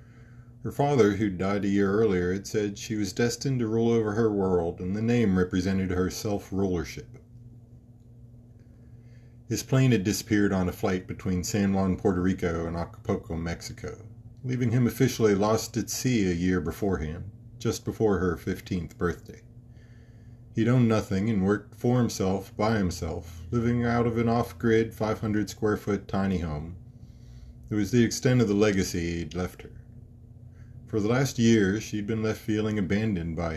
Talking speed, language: 160 wpm, English